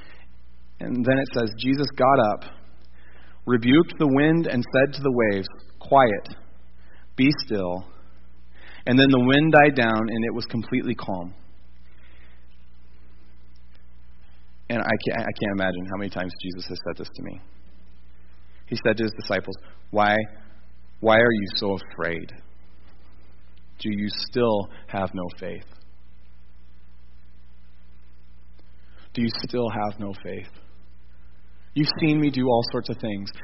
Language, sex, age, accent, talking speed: English, male, 30-49, American, 135 wpm